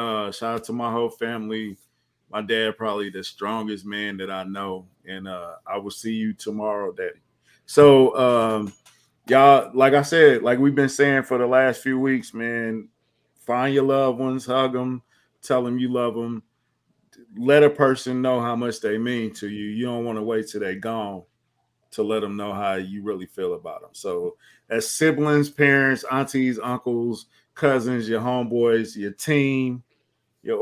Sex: male